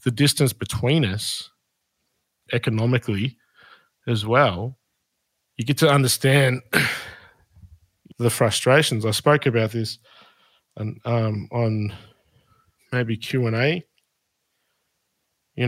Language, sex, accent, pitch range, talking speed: English, male, Australian, 115-140 Hz, 85 wpm